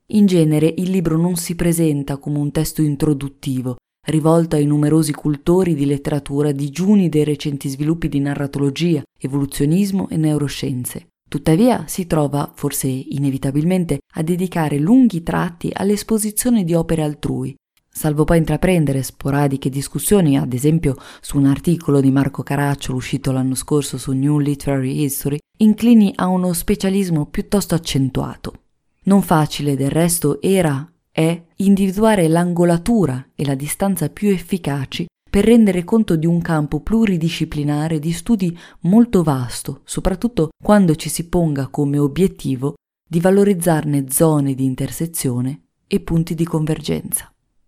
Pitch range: 140-175 Hz